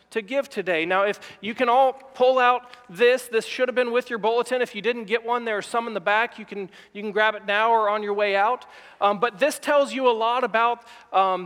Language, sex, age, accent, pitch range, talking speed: English, male, 40-59, American, 215-250 Hz, 260 wpm